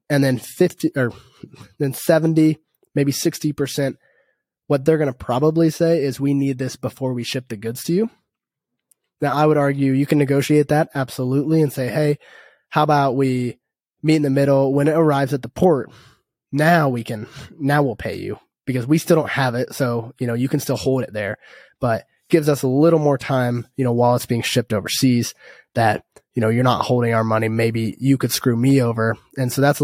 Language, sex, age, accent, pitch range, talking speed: English, male, 20-39, American, 120-150 Hz, 210 wpm